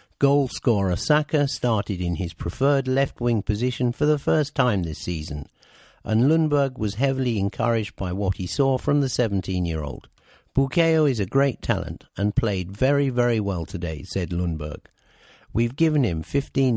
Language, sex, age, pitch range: English, male, 50-69, 95-130 Hz